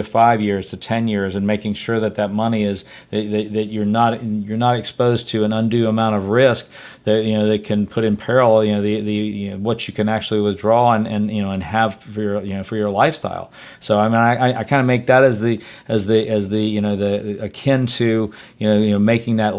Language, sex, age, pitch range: English, male, 40-59, 105-115 Hz